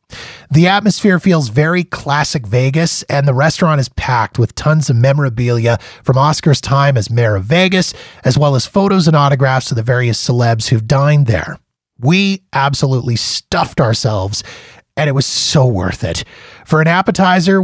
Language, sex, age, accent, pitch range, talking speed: English, male, 30-49, American, 125-175 Hz, 165 wpm